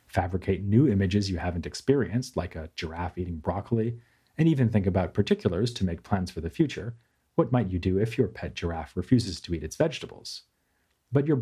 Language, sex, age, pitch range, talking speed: English, male, 40-59, 90-120 Hz, 195 wpm